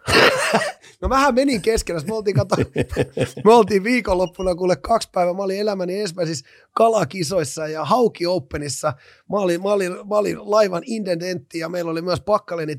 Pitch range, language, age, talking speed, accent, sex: 165-220 Hz, Finnish, 30-49, 165 wpm, native, male